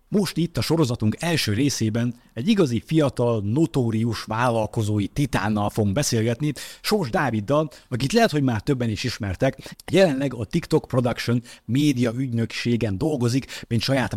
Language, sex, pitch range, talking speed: Hungarian, male, 105-140 Hz, 135 wpm